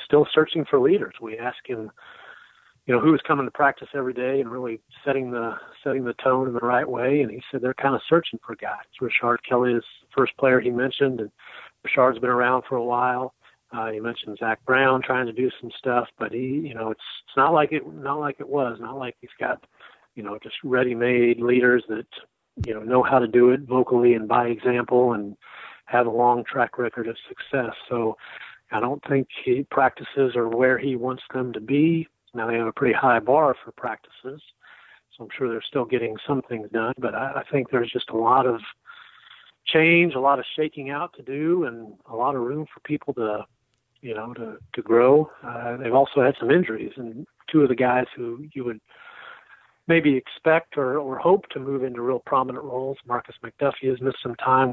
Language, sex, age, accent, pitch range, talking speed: English, male, 40-59, American, 120-140 Hz, 210 wpm